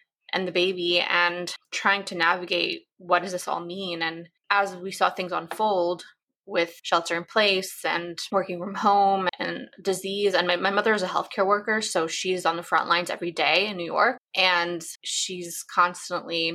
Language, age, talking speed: English, 20-39, 180 wpm